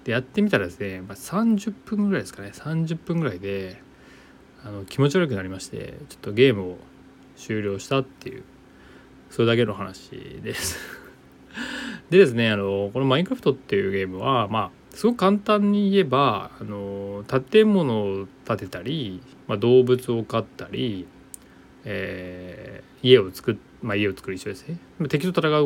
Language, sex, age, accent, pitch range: Japanese, male, 20-39, native, 95-160 Hz